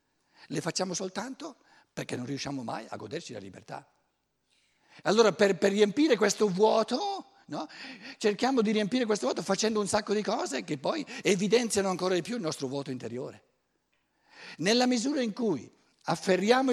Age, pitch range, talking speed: 60-79, 160-225 Hz, 150 wpm